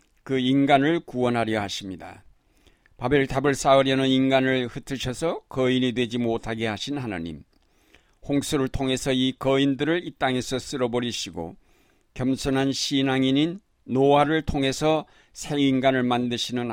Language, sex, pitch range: Korean, male, 120-140 Hz